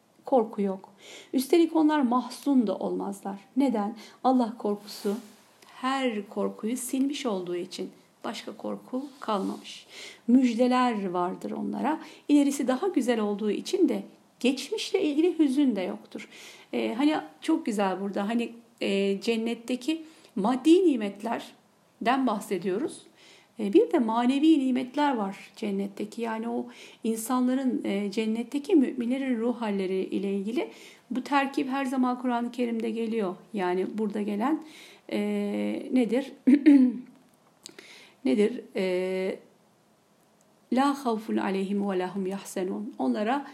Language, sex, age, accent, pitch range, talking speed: Turkish, female, 60-79, native, 210-275 Hz, 100 wpm